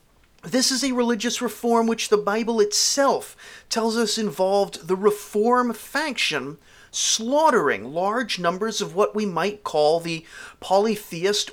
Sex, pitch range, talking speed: male, 165-225 Hz, 130 wpm